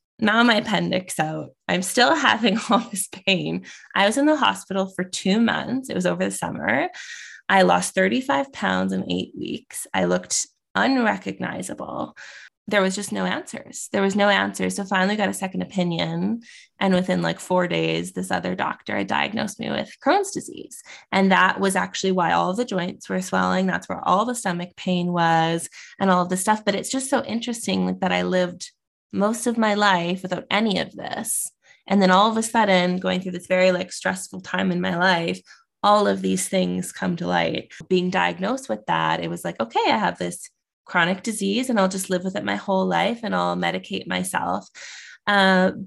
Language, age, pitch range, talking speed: English, 20-39, 175-210 Hz, 200 wpm